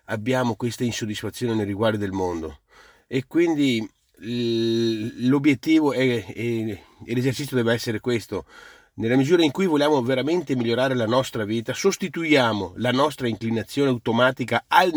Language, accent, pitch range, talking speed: Italian, native, 110-130 Hz, 125 wpm